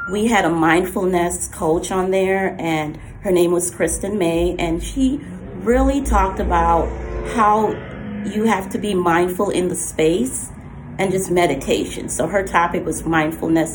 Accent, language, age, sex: American, English, 30-49, female